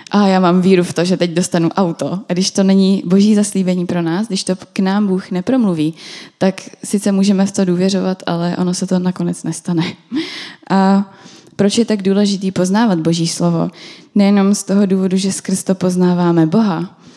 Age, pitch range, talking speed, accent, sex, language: 20-39, 175-200 Hz, 185 wpm, native, female, Czech